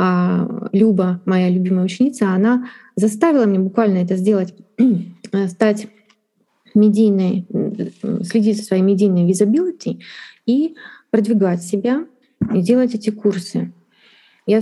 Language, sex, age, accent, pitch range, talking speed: Russian, female, 20-39, native, 195-245 Hz, 105 wpm